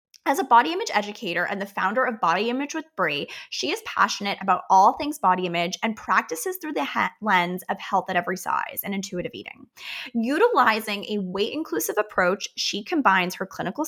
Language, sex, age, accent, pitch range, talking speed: English, female, 20-39, American, 185-235 Hz, 185 wpm